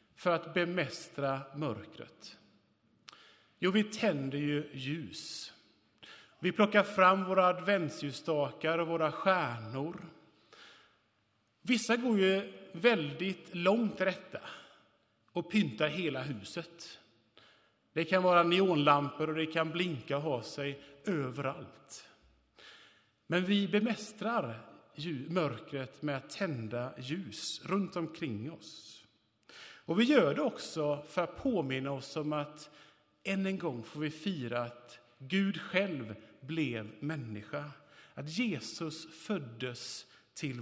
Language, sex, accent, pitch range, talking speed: Swedish, male, Norwegian, 135-185 Hz, 110 wpm